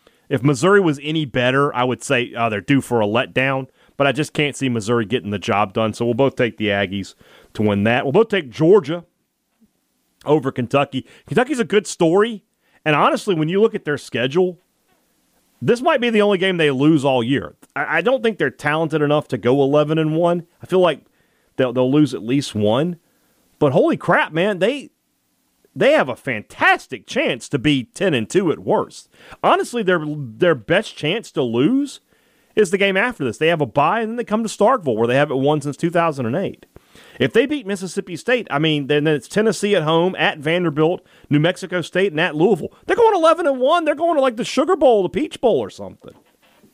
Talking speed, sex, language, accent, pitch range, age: 200 wpm, male, English, American, 140-210 Hz, 40-59